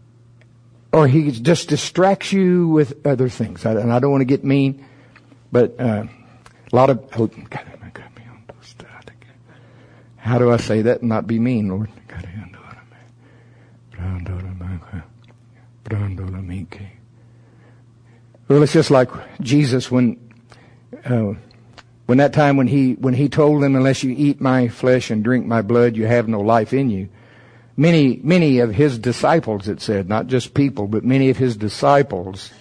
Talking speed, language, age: 140 wpm, English, 60-79